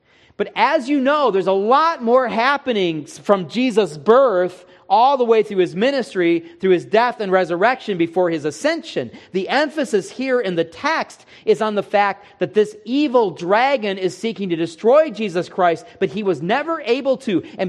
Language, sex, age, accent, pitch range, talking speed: English, male, 40-59, American, 140-200 Hz, 180 wpm